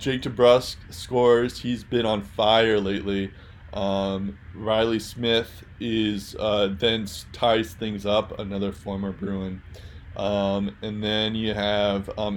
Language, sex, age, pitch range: English, male, 20-39, 100-115 Hz